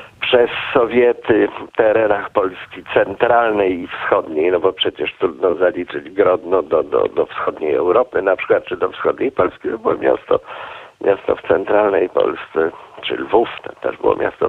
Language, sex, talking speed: Polish, male, 155 wpm